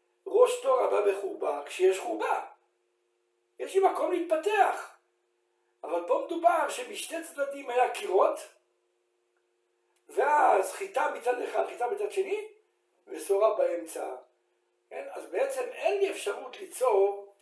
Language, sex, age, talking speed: Hebrew, male, 60-79, 100 wpm